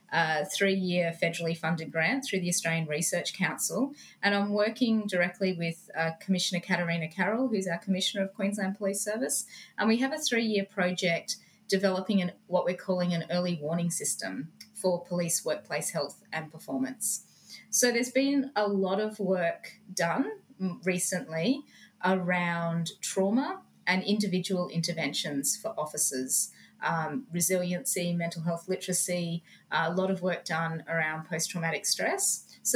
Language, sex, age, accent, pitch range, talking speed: English, female, 30-49, Australian, 170-210 Hz, 145 wpm